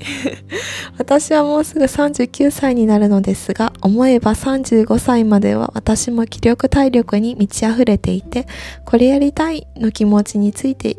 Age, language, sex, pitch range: 20-39, Japanese, female, 210-255 Hz